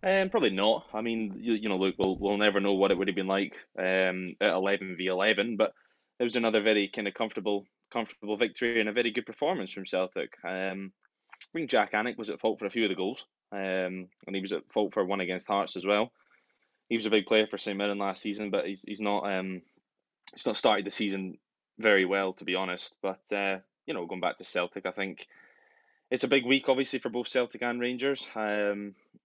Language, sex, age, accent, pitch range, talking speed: English, male, 20-39, British, 95-110 Hz, 235 wpm